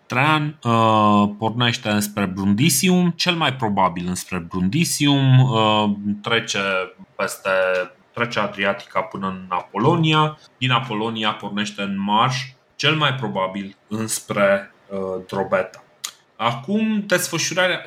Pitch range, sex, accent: 100-130 Hz, male, native